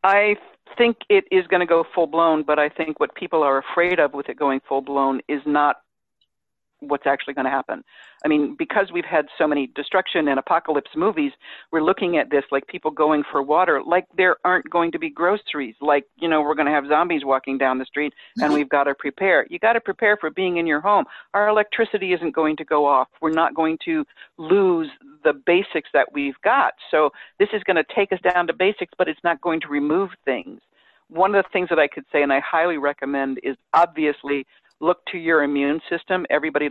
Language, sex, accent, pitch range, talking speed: English, female, American, 145-180 Hz, 220 wpm